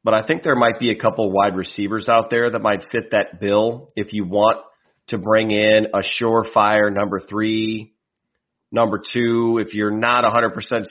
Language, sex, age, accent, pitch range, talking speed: English, male, 30-49, American, 100-115 Hz, 180 wpm